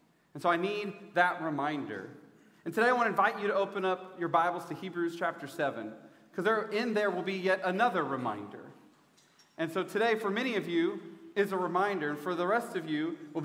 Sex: male